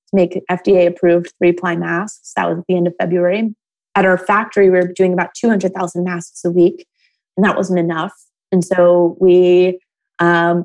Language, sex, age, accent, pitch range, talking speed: English, female, 20-39, American, 170-190 Hz, 180 wpm